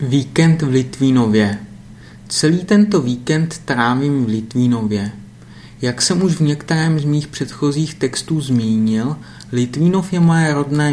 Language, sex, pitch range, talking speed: Czech, male, 120-150 Hz, 125 wpm